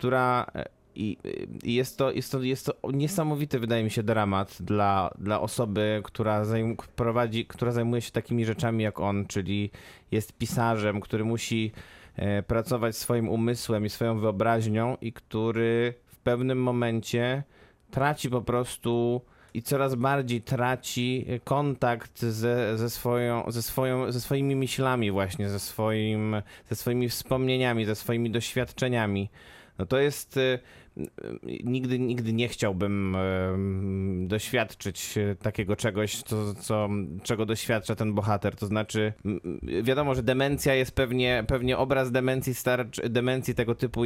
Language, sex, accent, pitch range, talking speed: Polish, male, native, 110-125 Hz, 130 wpm